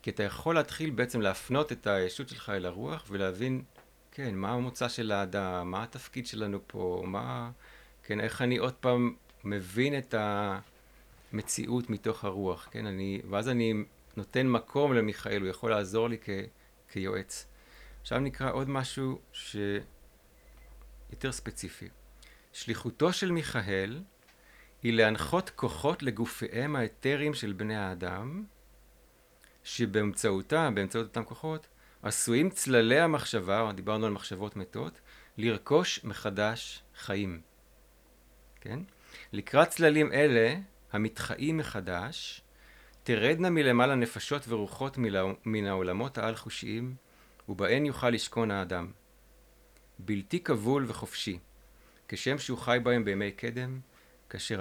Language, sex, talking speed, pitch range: Hebrew, male, 115 wpm, 95-125 Hz